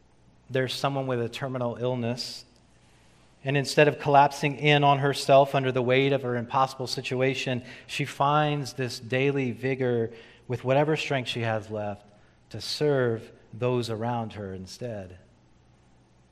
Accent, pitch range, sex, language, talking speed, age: American, 110-135 Hz, male, English, 135 wpm, 40-59